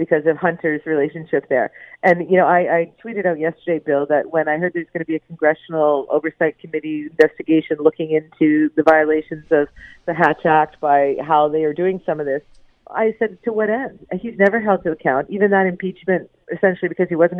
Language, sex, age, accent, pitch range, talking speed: English, female, 40-59, American, 155-190 Hz, 205 wpm